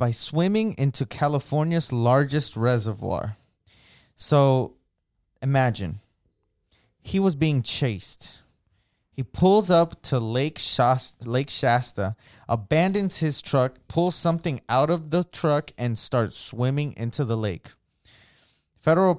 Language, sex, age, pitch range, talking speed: English, male, 20-39, 115-165 Hz, 115 wpm